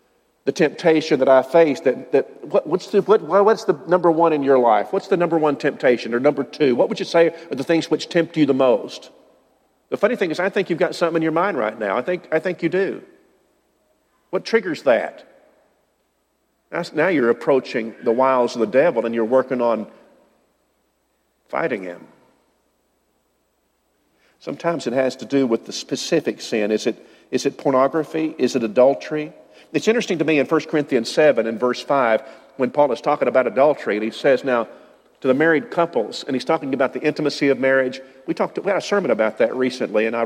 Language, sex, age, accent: English, male, 50-69, American